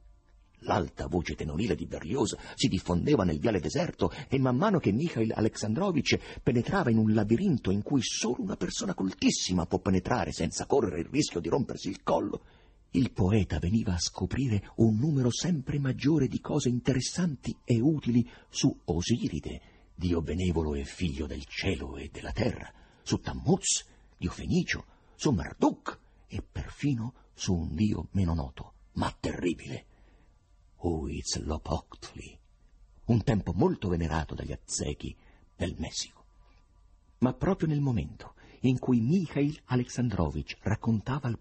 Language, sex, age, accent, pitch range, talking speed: Italian, male, 50-69, native, 85-125 Hz, 140 wpm